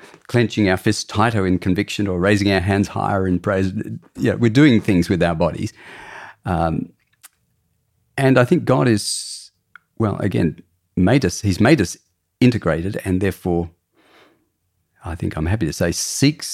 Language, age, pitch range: English, 40-59, 85-110 Hz